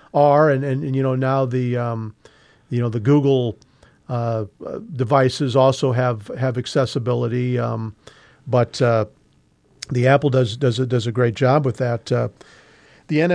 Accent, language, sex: American, English, male